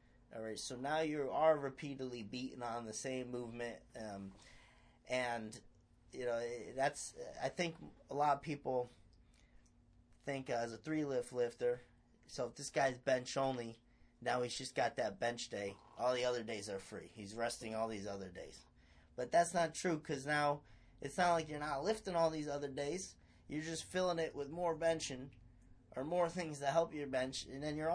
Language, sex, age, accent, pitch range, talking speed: English, male, 30-49, American, 115-150 Hz, 185 wpm